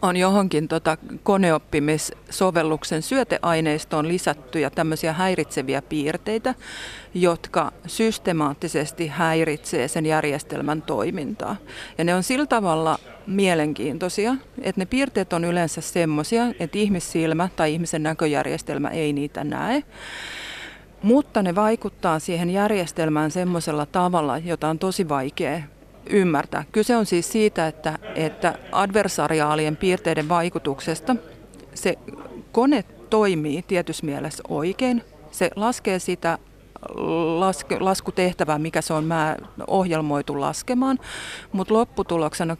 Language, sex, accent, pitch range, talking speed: Finnish, female, native, 155-190 Hz, 100 wpm